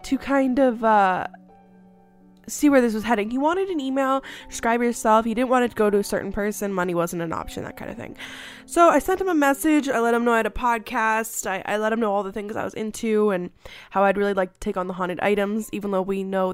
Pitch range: 200-255 Hz